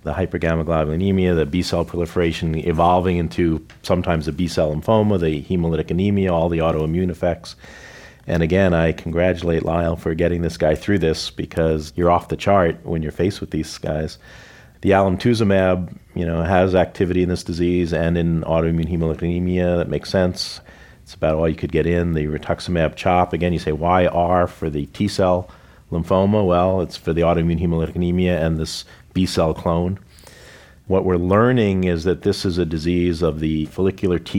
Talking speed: 180 wpm